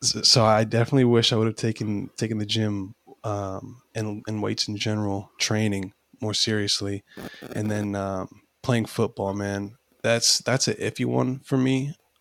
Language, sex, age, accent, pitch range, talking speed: English, male, 20-39, American, 100-115 Hz, 160 wpm